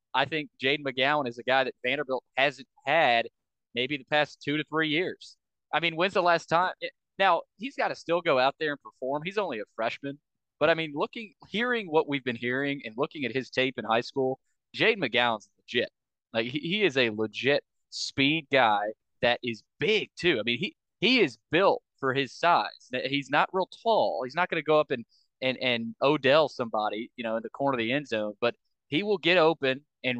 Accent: American